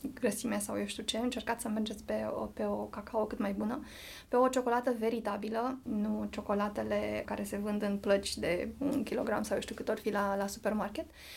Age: 20-39